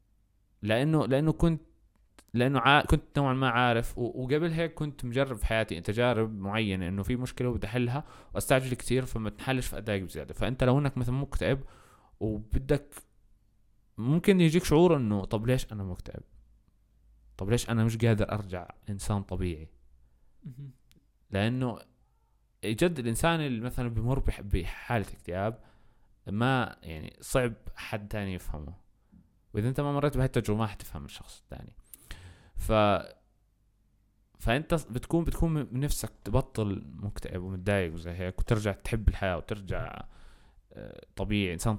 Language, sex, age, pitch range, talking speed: Arabic, male, 20-39, 100-130 Hz, 130 wpm